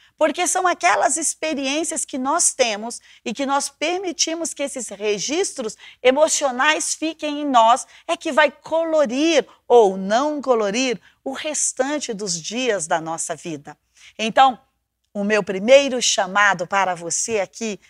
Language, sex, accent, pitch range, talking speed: Portuguese, female, Brazilian, 210-295 Hz, 135 wpm